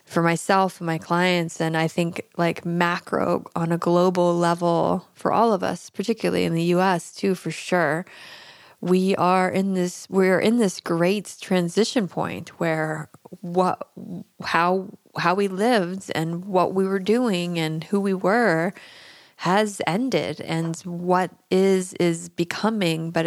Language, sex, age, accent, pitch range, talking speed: English, female, 20-39, American, 165-190 Hz, 150 wpm